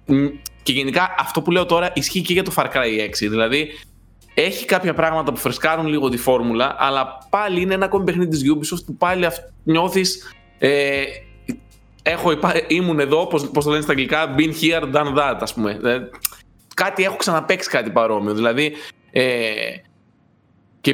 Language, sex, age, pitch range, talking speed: Greek, male, 20-39, 120-170 Hz, 155 wpm